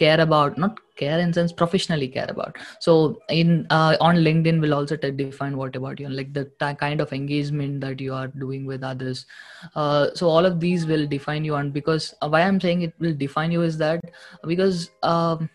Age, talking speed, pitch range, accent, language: 20-39, 210 wpm, 135-160 Hz, Indian, English